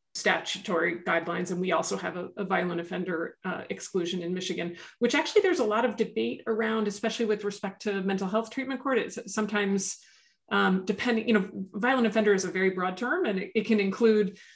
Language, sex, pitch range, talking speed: English, female, 185-225 Hz, 200 wpm